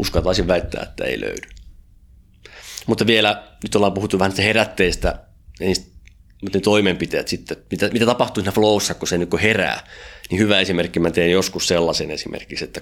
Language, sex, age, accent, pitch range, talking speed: Finnish, male, 30-49, native, 90-110 Hz, 160 wpm